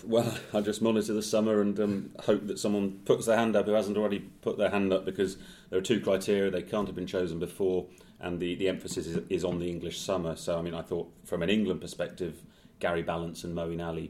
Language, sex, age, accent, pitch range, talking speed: English, male, 30-49, British, 85-100 Hz, 245 wpm